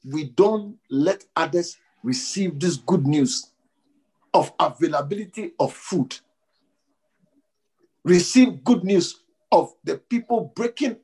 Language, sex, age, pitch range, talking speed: English, male, 50-69, 175-285 Hz, 105 wpm